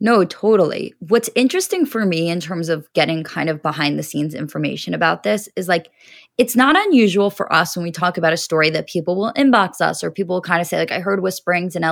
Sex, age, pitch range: female, 20-39, 165-200 Hz